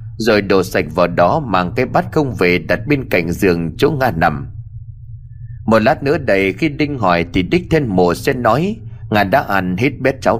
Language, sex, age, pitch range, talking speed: Vietnamese, male, 20-39, 95-135 Hz, 210 wpm